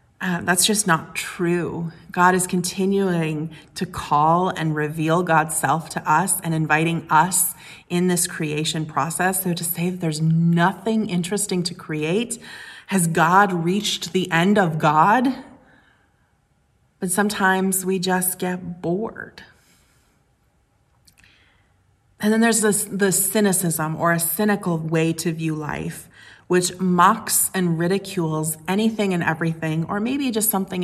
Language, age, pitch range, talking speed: English, 30-49, 160-195 Hz, 135 wpm